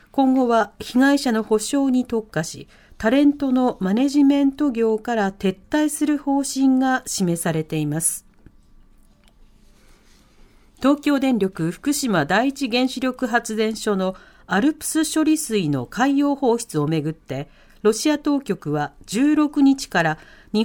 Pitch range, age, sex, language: 185-280 Hz, 40-59, female, Japanese